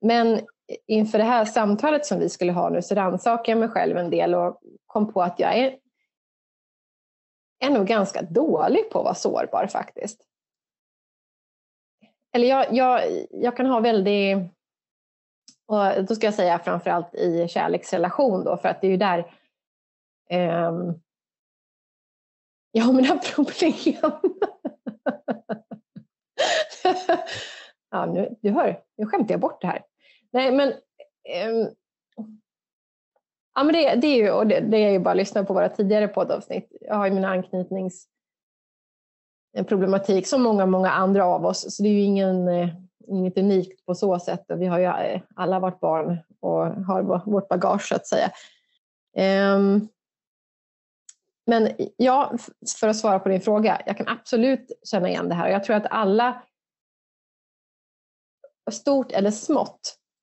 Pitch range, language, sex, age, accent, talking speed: 190-250 Hz, Swedish, female, 30-49, native, 145 wpm